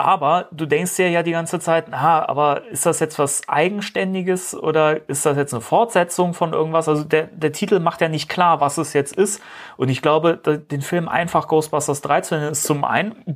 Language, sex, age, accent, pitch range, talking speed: German, male, 30-49, German, 140-170 Hz, 210 wpm